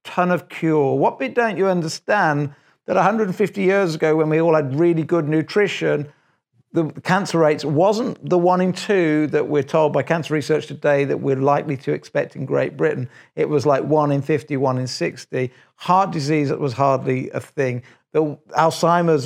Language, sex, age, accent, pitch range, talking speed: English, male, 50-69, British, 140-170 Hz, 180 wpm